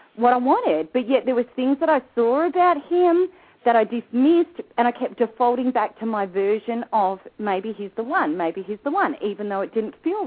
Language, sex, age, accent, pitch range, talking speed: English, female, 40-59, Australian, 215-300 Hz, 220 wpm